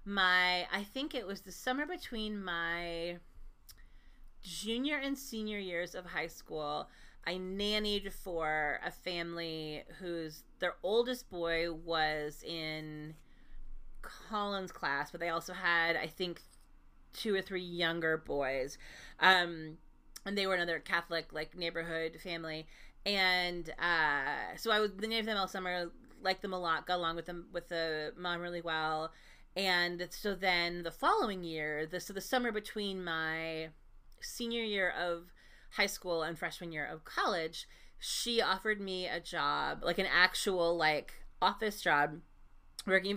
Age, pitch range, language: 30-49, 165-205 Hz, English